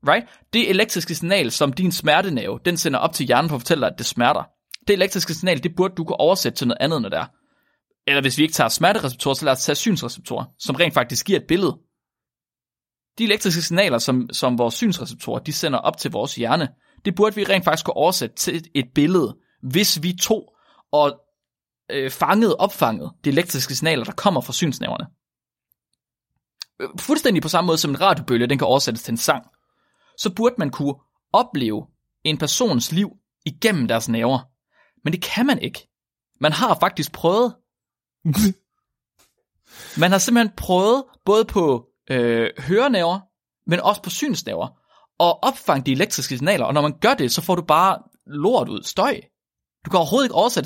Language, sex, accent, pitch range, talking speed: Danish, male, native, 145-205 Hz, 180 wpm